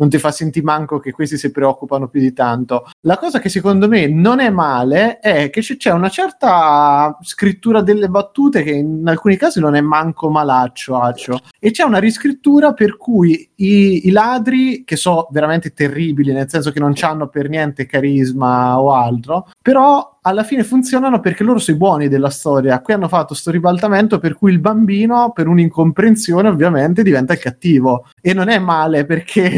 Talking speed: 185 wpm